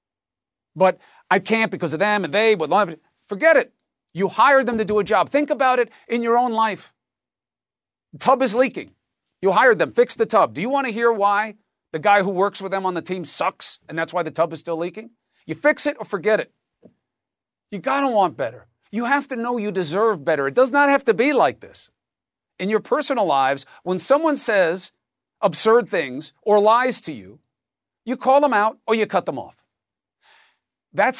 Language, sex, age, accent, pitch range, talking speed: English, male, 40-59, American, 160-235 Hz, 205 wpm